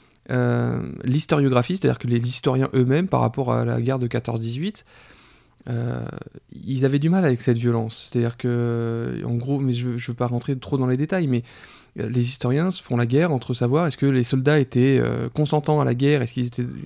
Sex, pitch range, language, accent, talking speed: male, 125-150 Hz, French, French, 190 wpm